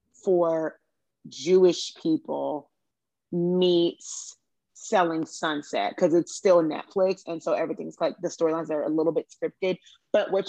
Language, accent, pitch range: English, American, 155-190 Hz